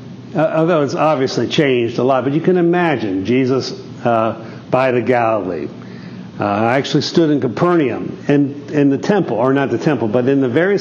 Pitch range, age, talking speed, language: 120-155 Hz, 50-69, 190 wpm, English